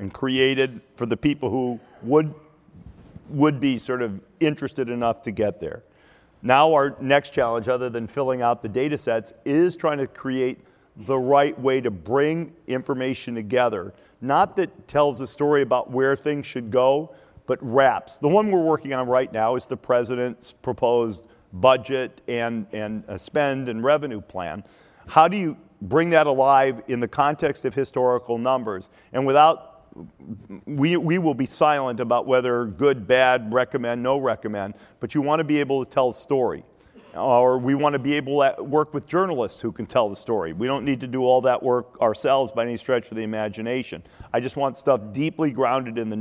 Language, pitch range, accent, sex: English, 120-145 Hz, American, male